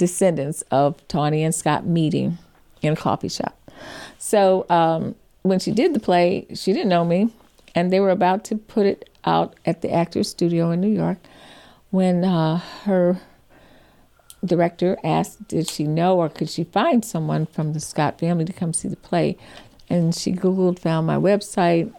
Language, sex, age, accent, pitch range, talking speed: English, female, 50-69, American, 165-200 Hz, 175 wpm